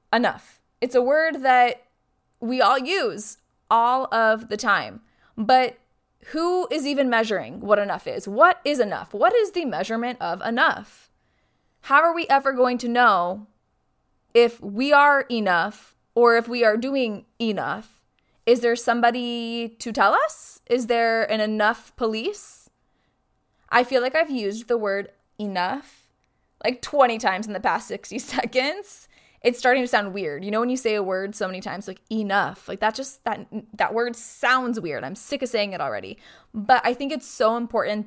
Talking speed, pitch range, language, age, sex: 175 wpm, 210-255 Hz, English, 20-39, female